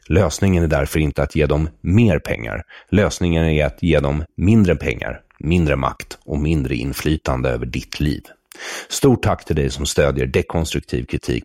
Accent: Swedish